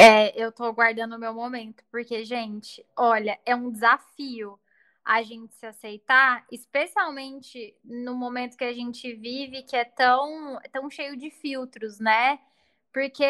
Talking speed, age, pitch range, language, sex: 150 wpm, 10-29, 235-300 Hz, Portuguese, female